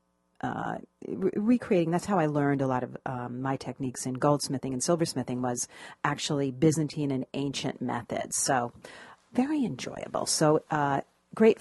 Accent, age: American, 40-59